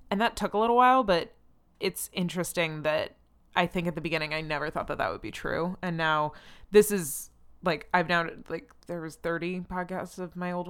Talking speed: 215 wpm